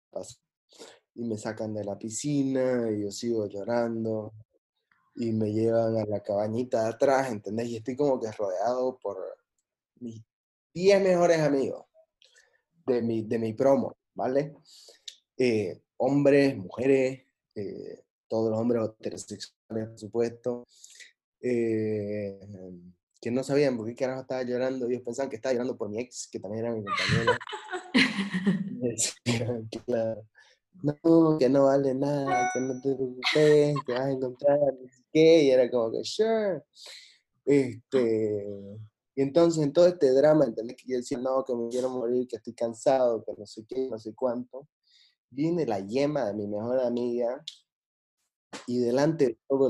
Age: 20-39